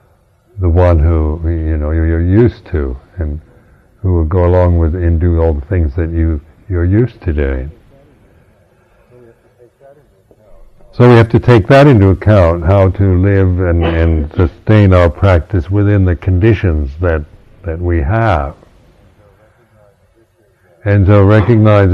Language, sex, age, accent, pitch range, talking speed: English, male, 60-79, American, 85-105 Hz, 140 wpm